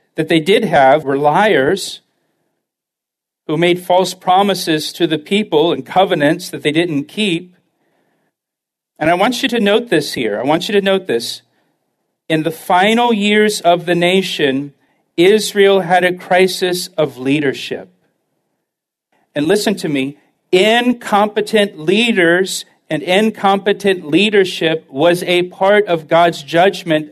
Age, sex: 50-69, male